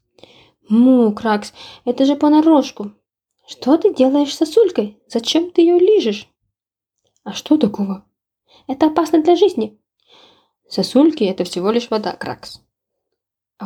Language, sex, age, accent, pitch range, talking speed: Ukrainian, female, 20-39, native, 200-275 Hz, 125 wpm